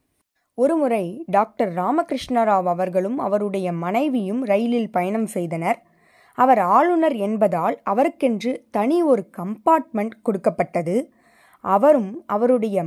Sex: female